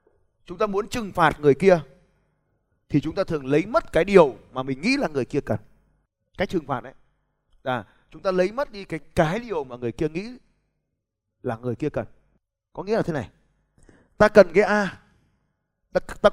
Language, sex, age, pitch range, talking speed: Vietnamese, male, 20-39, 125-205 Hz, 195 wpm